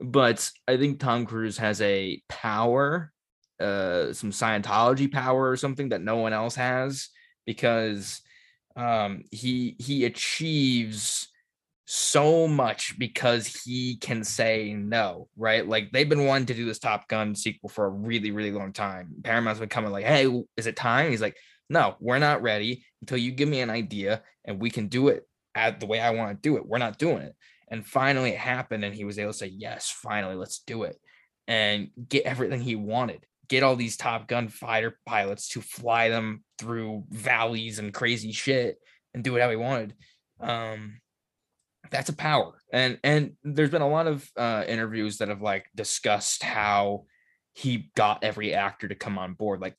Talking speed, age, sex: 185 wpm, 20-39, male